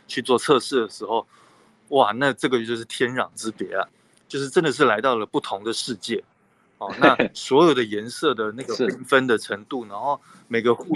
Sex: male